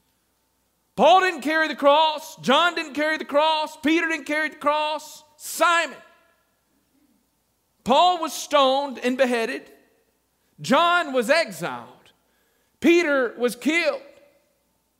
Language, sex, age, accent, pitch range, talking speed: English, male, 50-69, American, 255-340 Hz, 110 wpm